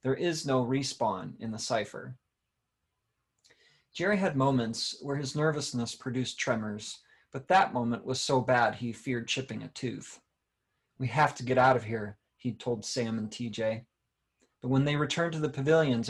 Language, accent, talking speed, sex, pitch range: English, American, 170 wpm, male, 120-135 Hz